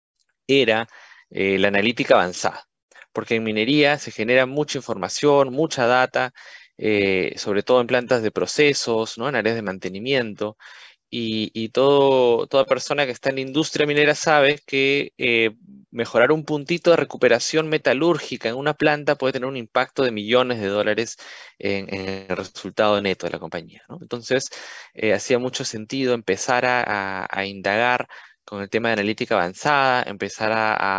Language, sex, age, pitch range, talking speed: Spanish, male, 20-39, 100-135 Hz, 165 wpm